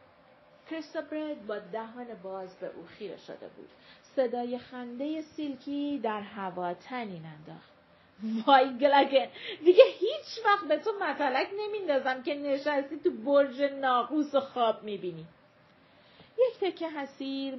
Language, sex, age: Persian, female, 40-59